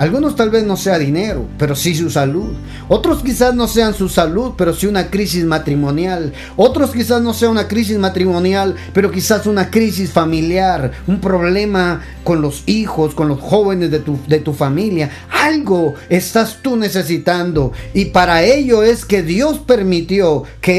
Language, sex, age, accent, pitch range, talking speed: Spanish, male, 40-59, Mexican, 150-205 Hz, 165 wpm